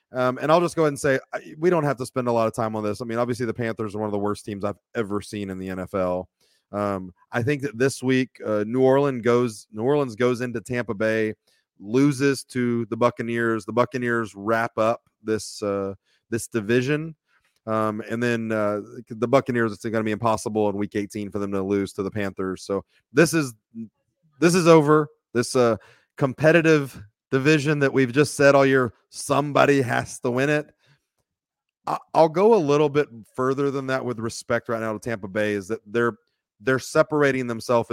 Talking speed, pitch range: 205 wpm, 110-135 Hz